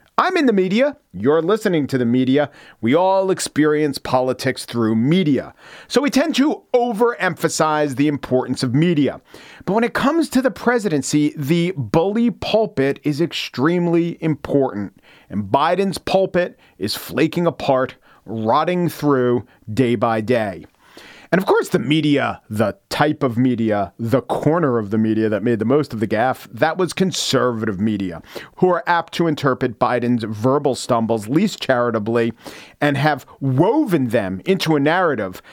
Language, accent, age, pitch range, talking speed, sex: English, American, 40-59, 125-175 Hz, 150 wpm, male